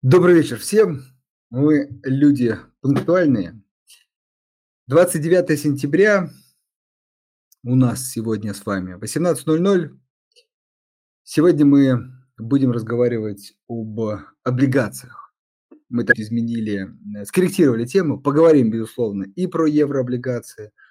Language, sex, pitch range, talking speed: Russian, male, 110-145 Hz, 90 wpm